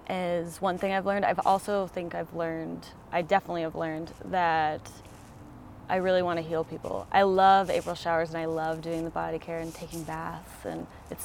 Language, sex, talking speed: English, female, 195 wpm